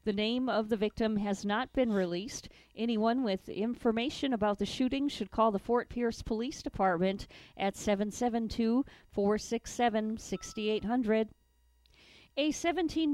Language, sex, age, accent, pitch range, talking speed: English, female, 40-59, American, 195-235 Hz, 120 wpm